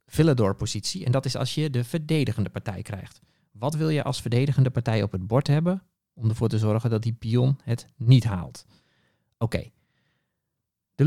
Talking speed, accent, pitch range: 180 wpm, Dutch, 110-145 Hz